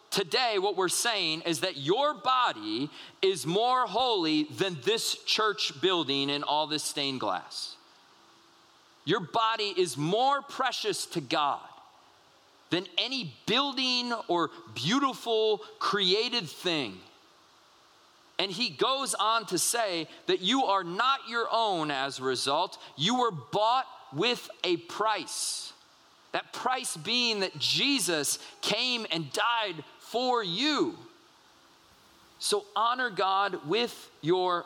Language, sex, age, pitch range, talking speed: English, male, 40-59, 175-255 Hz, 120 wpm